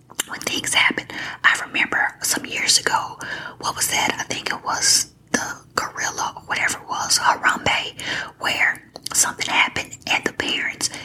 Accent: American